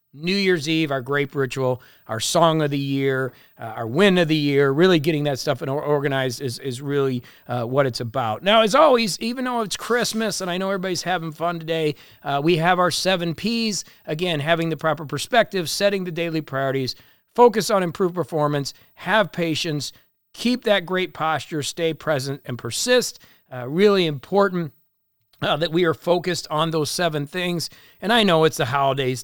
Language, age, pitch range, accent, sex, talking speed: English, 40-59, 140-180 Hz, American, male, 185 wpm